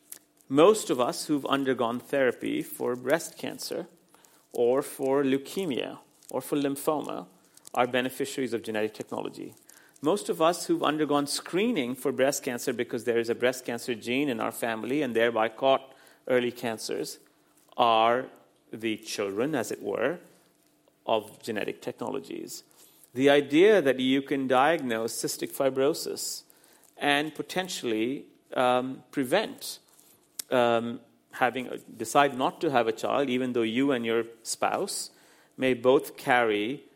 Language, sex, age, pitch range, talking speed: English, male, 50-69, 120-145 Hz, 135 wpm